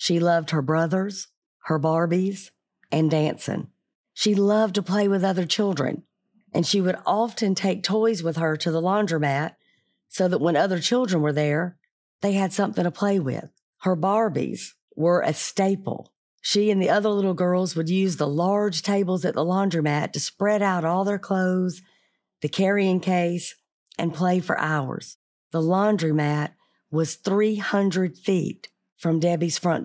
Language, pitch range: English, 160-195 Hz